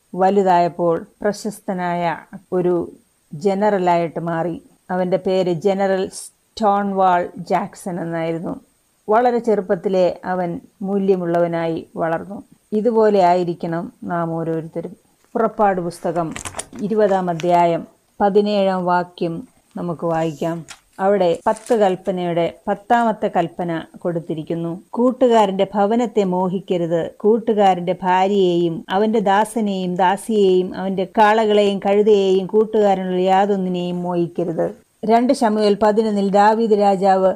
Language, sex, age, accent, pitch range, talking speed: Malayalam, female, 30-49, native, 175-210 Hz, 85 wpm